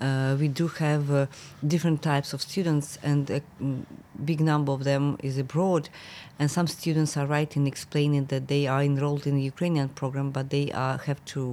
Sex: female